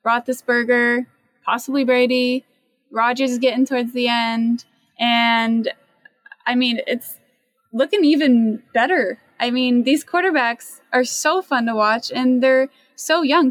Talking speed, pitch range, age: 140 wpm, 225-265 Hz, 20-39